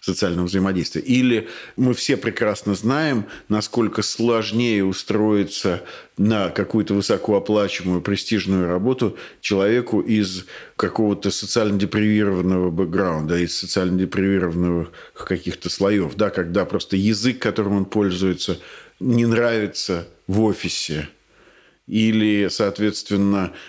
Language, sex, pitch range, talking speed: Russian, male, 95-110 Hz, 100 wpm